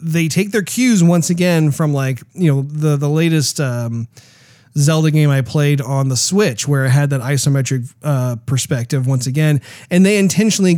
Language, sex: English, male